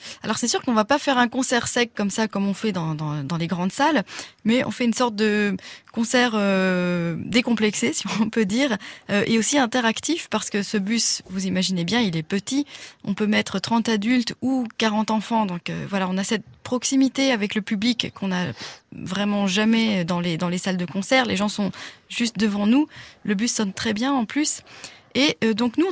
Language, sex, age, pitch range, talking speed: French, female, 20-39, 190-235 Hz, 220 wpm